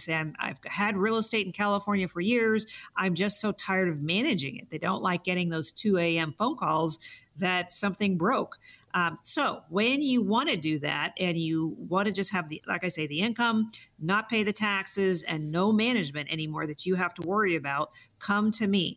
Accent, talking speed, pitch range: American, 205 wpm, 160-205 Hz